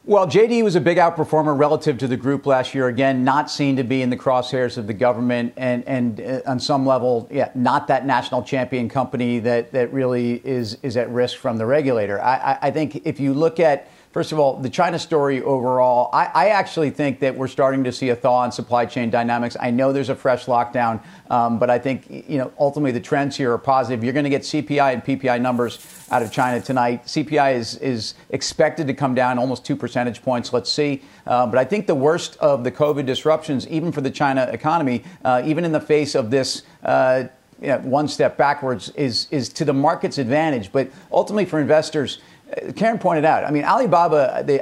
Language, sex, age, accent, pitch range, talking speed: English, male, 40-59, American, 125-150 Hz, 215 wpm